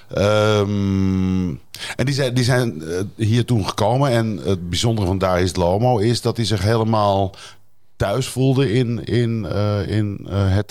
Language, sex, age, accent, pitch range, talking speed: Dutch, male, 50-69, Dutch, 90-115 Hz, 135 wpm